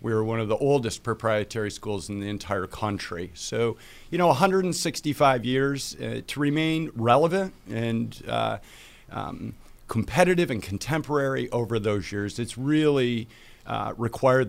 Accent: American